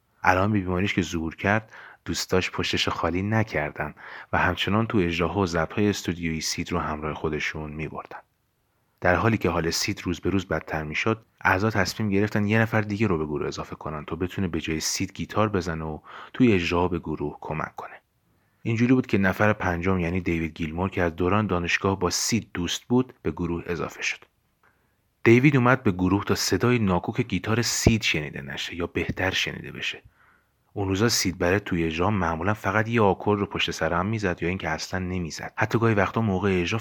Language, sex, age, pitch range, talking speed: Persian, male, 30-49, 85-110 Hz, 185 wpm